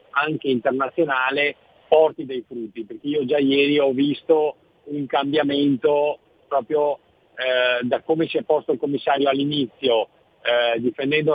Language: Italian